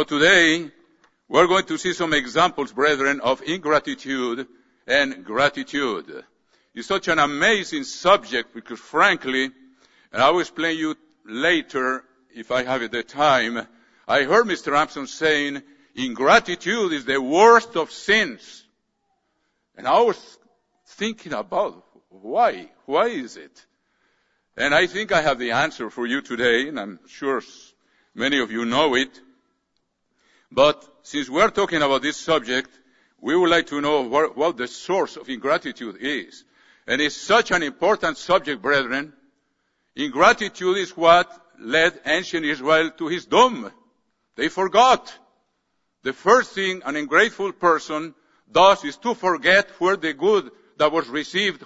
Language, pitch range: English, 145-215 Hz